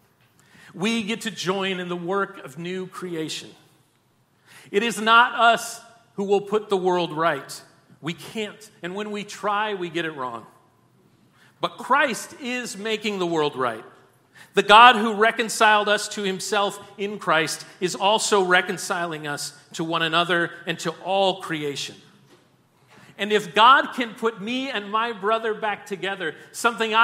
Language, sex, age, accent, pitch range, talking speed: English, male, 40-59, American, 145-210 Hz, 155 wpm